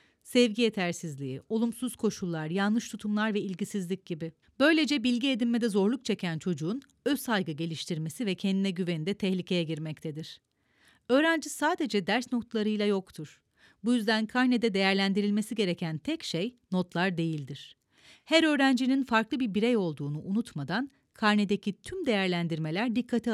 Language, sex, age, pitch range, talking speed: Turkish, female, 40-59, 190-260 Hz, 125 wpm